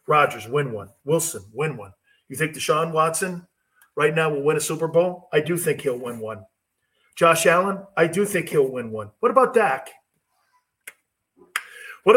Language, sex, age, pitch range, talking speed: English, male, 40-59, 145-205 Hz, 175 wpm